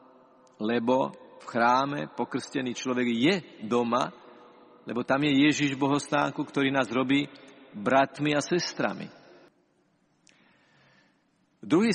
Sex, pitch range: male, 120-150 Hz